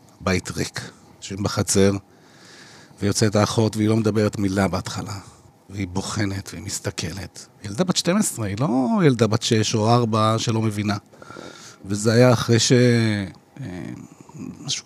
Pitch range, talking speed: 110-135 Hz, 125 wpm